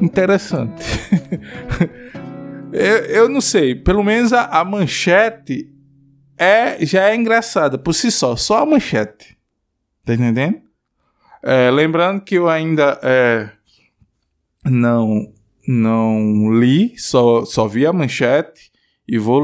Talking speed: 115 wpm